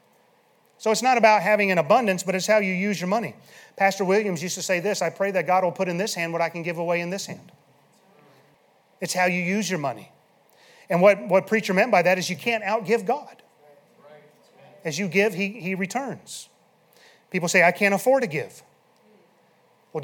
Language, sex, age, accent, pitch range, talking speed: English, male, 30-49, American, 160-200 Hz, 205 wpm